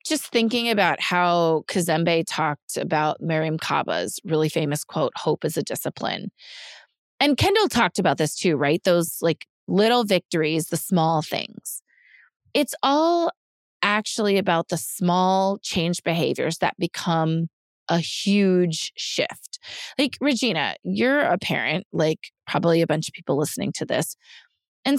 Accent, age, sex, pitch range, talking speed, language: American, 30-49, female, 165-235 Hz, 140 wpm, English